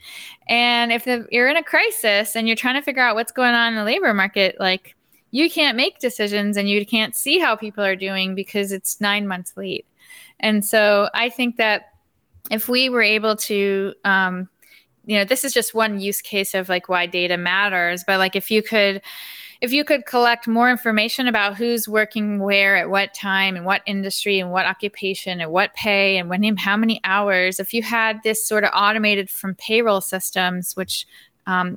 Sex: female